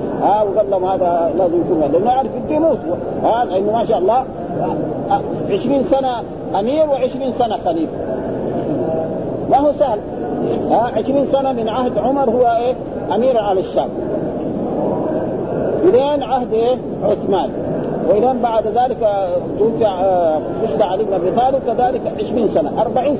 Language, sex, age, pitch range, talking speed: Arabic, male, 50-69, 200-265 Hz, 125 wpm